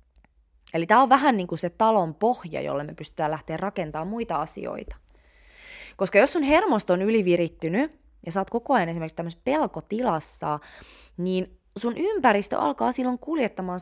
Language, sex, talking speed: Finnish, female, 150 wpm